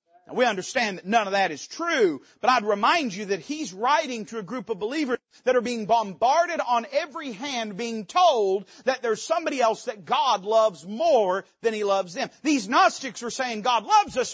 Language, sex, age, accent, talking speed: English, male, 40-59, American, 205 wpm